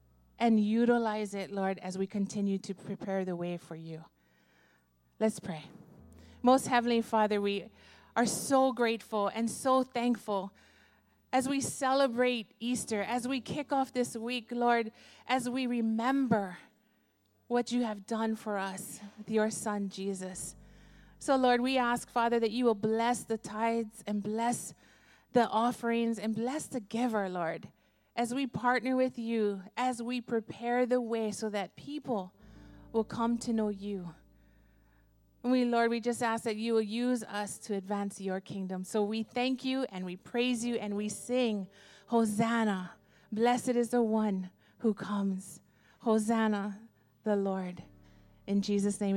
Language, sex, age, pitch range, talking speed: English, female, 30-49, 195-240 Hz, 155 wpm